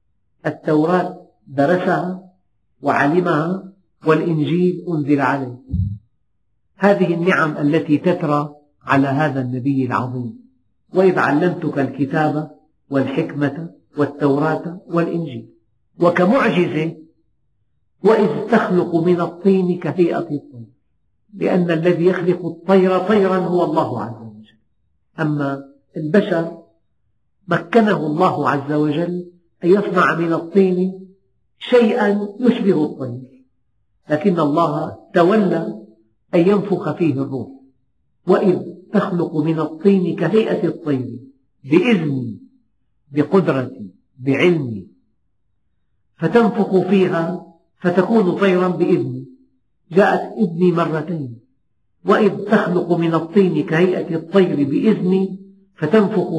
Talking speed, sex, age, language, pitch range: 85 wpm, male, 50-69, Arabic, 135-185 Hz